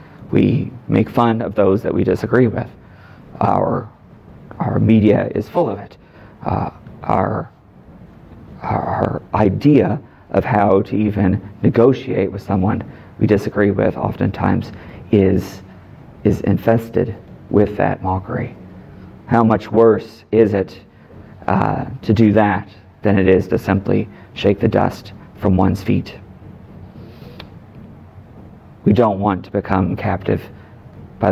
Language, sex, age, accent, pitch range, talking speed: English, male, 40-59, American, 95-115 Hz, 125 wpm